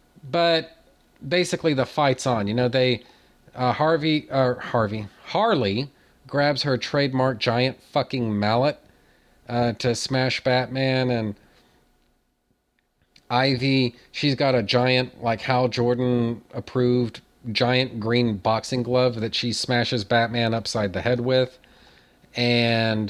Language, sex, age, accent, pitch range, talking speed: English, male, 40-59, American, 115-140 Hz, 115 wpm